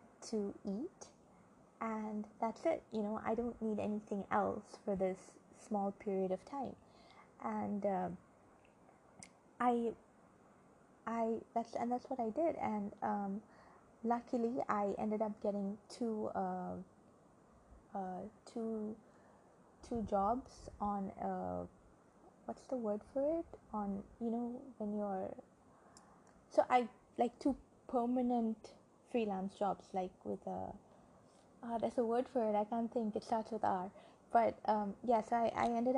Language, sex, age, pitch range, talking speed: English, female, 20-39, 205-240 Hz, 140 wpm